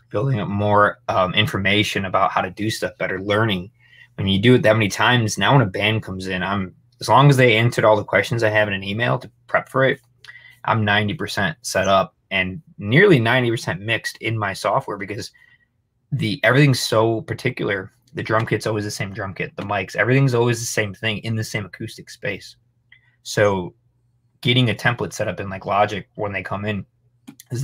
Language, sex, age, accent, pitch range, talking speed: English, male, 20-39, American, 100-120 Hz, 205 wpm